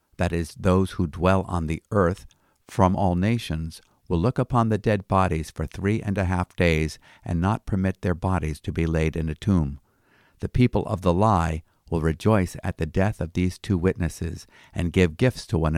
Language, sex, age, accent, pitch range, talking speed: English, male, 50-69, American, 80-100 Hz, 200 wpm